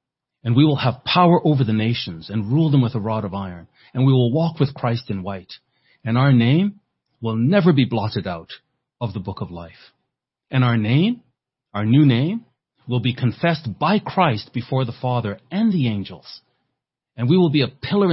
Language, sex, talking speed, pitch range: English, male, 200 wpm, 115-150 Hz